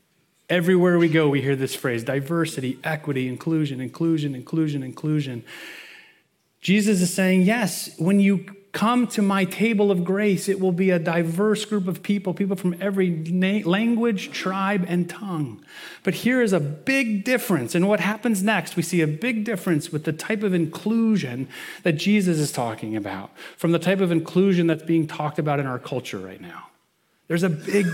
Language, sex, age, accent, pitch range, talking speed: English, male, 30-49, American, 150-200 Hz, 180 wpm